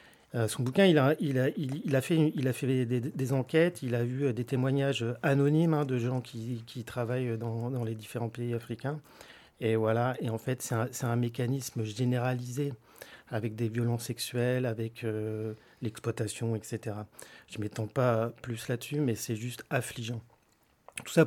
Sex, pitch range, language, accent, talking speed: male, 115-145 Hz, French, French, 185 wpm